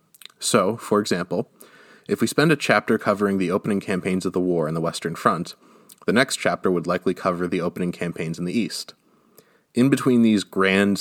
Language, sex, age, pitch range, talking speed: English, male, 20-39, 90-105 Hz, 190 wpm